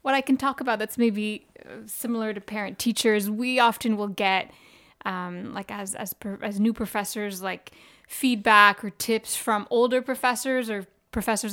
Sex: female